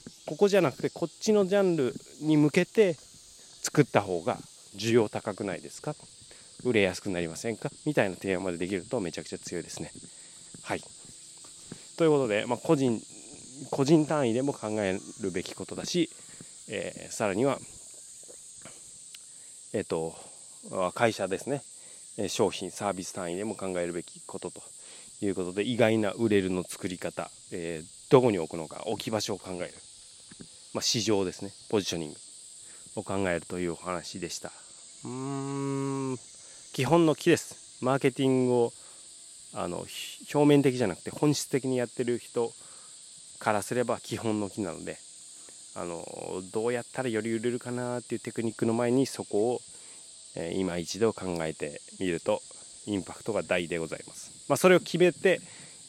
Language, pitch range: Japanese, 100-145 Hz